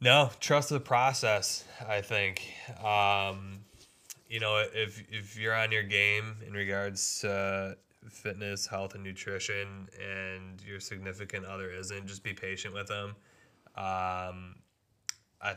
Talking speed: 130 wpm